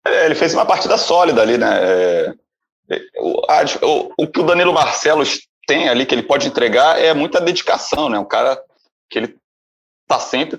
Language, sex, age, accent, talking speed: Portuguese, male, 30-49, Brazilian, 180 wpm